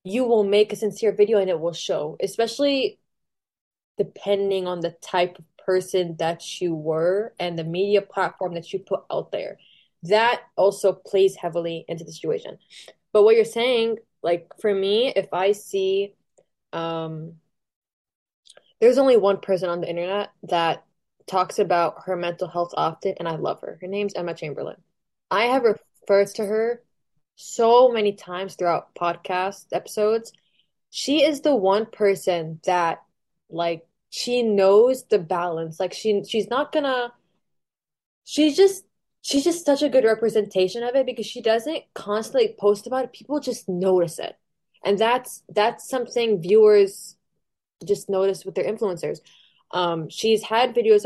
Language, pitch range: English, 180-225 Hz